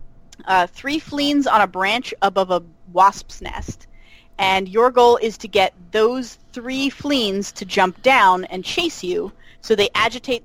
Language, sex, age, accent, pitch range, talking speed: English, female, 30-49, American, 175-215 Hz, 160 wpm